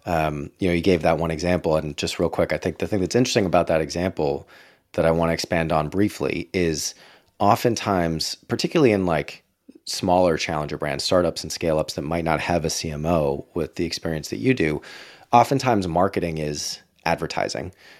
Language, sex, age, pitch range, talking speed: English, male, 30-49, 80-95 Hz, 185 wpm